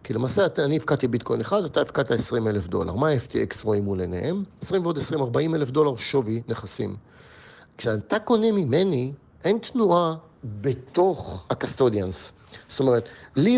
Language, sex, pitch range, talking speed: Hebrew, male, 115-190 Hz, 155 wpm